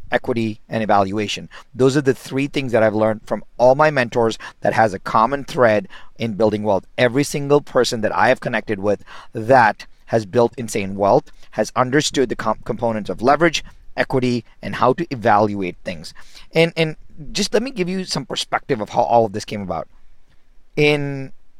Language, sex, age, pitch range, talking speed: English, male, 40-59, 105-130 Hz, 185 wpm